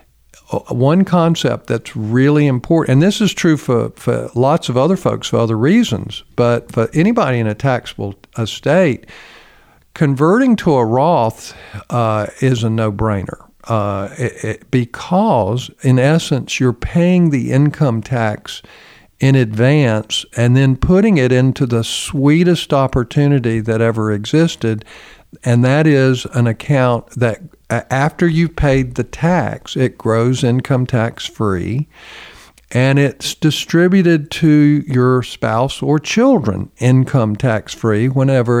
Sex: male